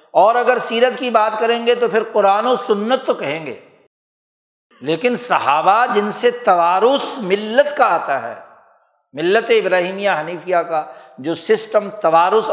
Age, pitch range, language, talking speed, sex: 60-79, 170-235 Hz, Urdu, 150 wpm, male